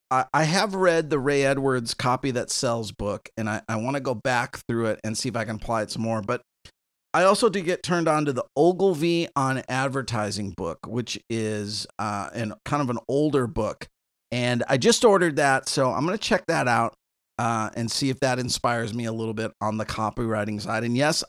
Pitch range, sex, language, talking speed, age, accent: 110-155 Hz, male, English, 215 wpm, 40-59, American